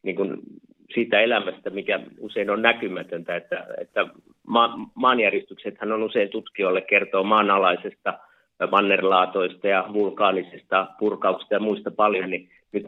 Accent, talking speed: native, 105 wpm